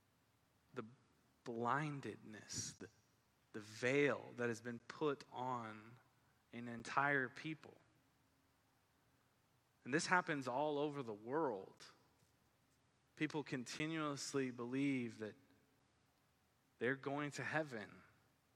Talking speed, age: 85 wpm, 20-39